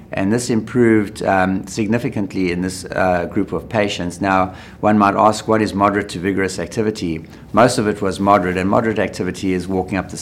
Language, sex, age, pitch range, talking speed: English, male, 60-79, 90-105 Hz, 195 wpm